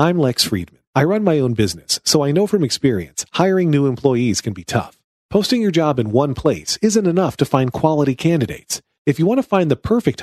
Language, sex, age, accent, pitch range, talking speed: English, male, 40-59, American, 120-160 Hz, 225 wpm